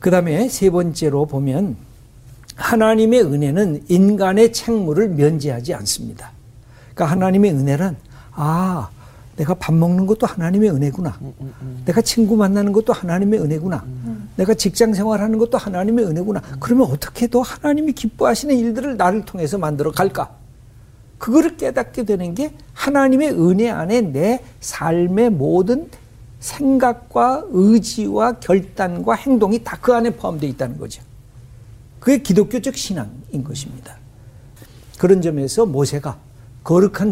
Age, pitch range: 60-79, 130-215 Hz